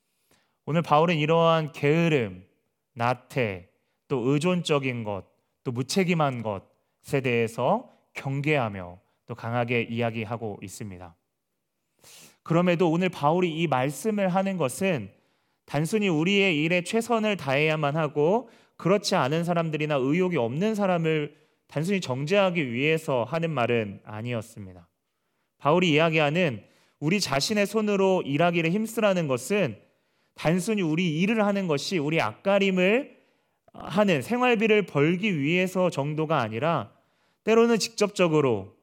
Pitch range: 135-185 Hz